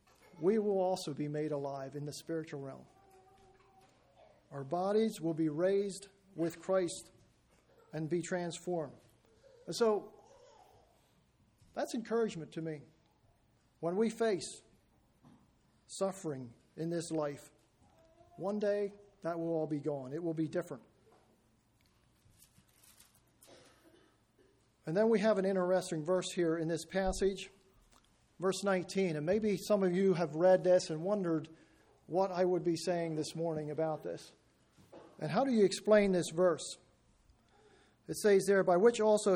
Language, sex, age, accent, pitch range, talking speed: English, male, 50-69, American, 155-200 Hz, 135 wpm